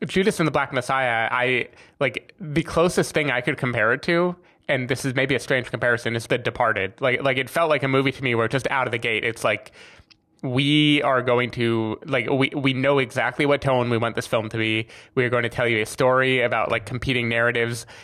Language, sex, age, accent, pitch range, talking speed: English, male, 20-39, American, 115-140 Hz, 235 wpm